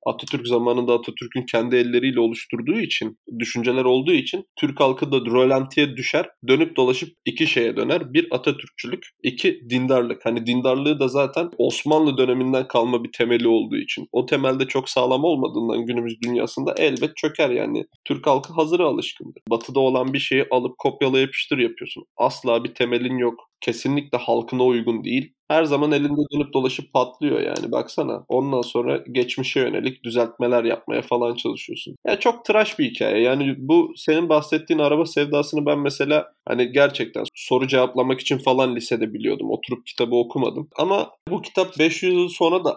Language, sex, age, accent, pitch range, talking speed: Turkish, male, 20-39, native, 125-155 Hz, 160 wpm